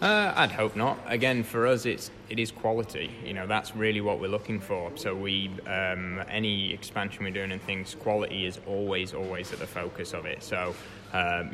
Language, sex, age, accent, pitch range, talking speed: English, male, 20-39, British, 95-110 Hz, 205 wpm